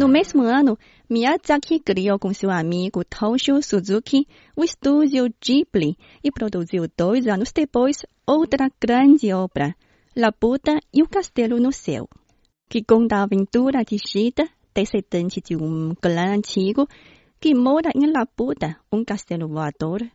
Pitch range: 195-280 Hz